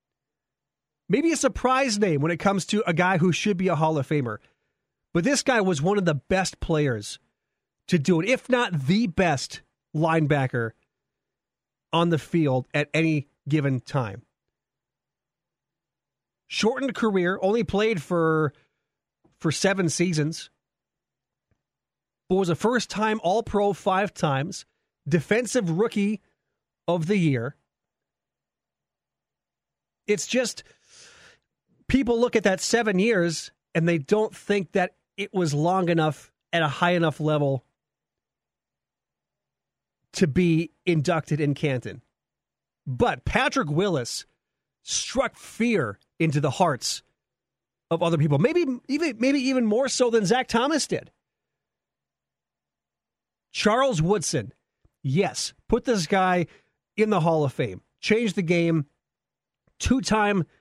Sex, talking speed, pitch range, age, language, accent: male, 125 wpm, 150-210 Hz, 30-49, English, American